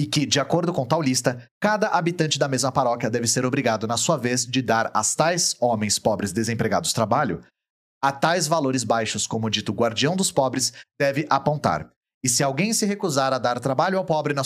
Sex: male